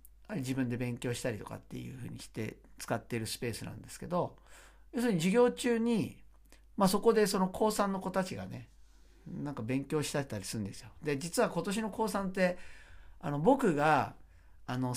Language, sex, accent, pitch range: Japanese, male, native, 110-180 Hz